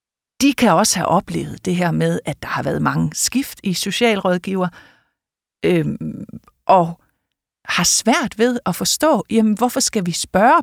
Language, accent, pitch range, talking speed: Danish, native, 180-240 Hz, 145 wpm